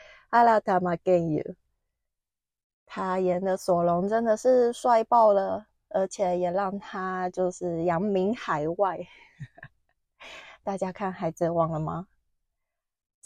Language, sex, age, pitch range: Chinese, female, 20-39, 180-215 Hz